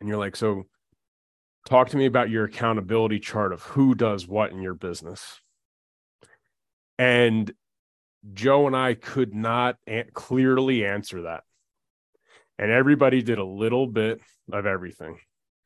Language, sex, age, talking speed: English, male, 30-49, 135 wpm